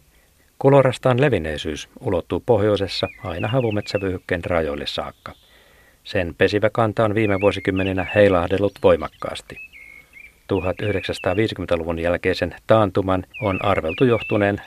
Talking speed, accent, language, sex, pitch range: 85 wpm, native, Finnish, male, 90-105 Hz